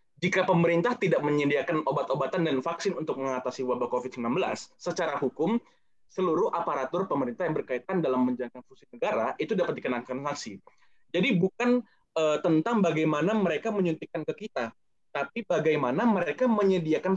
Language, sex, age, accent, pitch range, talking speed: Indonesian, male, 20-39, native, 130-185 Hz, 135 wpm